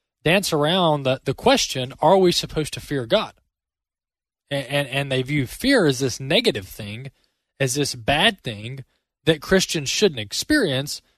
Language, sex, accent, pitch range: English, male, American, 120-180 Hz